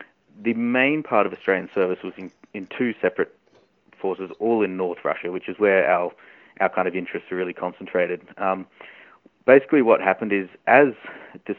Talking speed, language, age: 175 wpm, English, 30-49